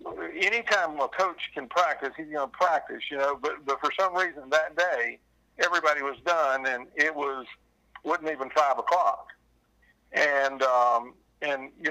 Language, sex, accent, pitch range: English, male, American, 130-150 Hz